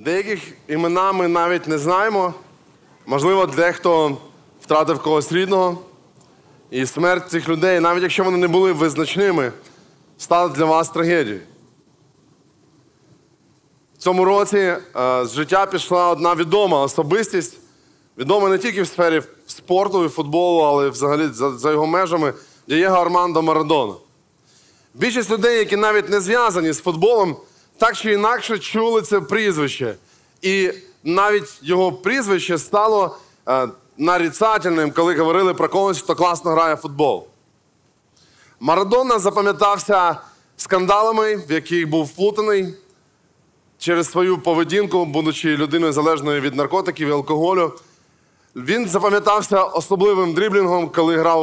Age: 20-39